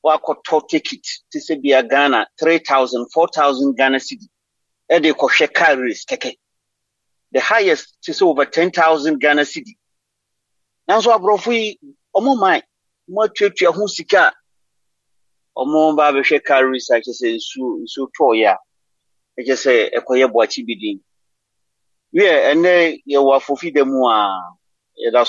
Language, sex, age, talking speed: English, male, 40-59, 55 wpm